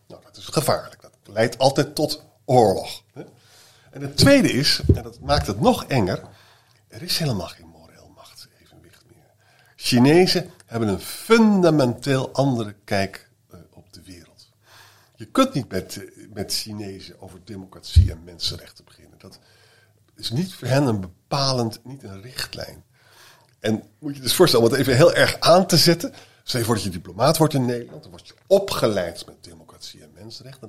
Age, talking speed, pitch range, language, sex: 50-69, 170 wpm, 100-150 Hz, Dutch, male